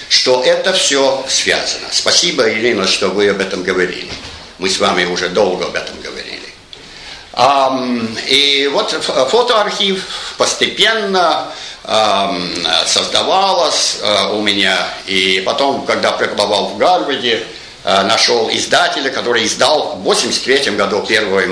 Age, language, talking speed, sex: 60-79, Russian, 110 wpm, male